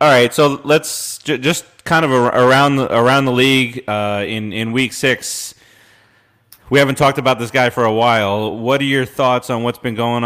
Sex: male